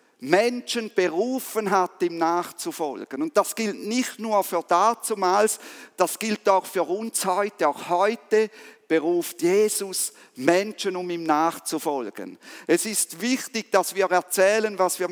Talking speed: 135 wpm